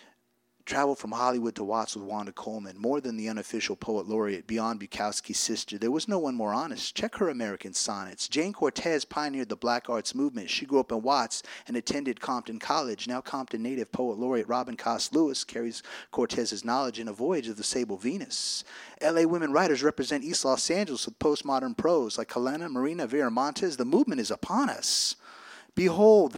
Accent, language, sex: American, English, male